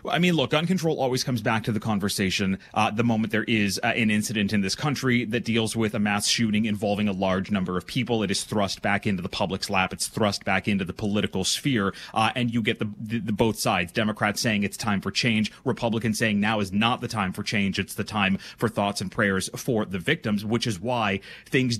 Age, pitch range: 30-49, 105-125 Hz